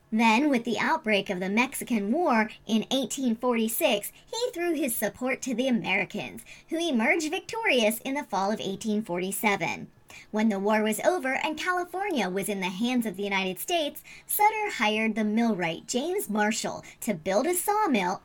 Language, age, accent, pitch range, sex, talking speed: English, 40-59, American, 210-295 Hz, male, 165 wpm